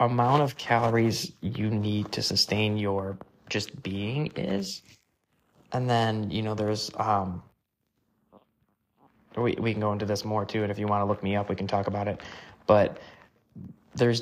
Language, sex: English, male